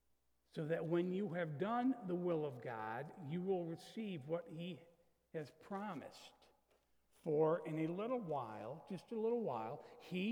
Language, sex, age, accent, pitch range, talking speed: English, male, 60-79, American, 125-205 Hz, 155 wpm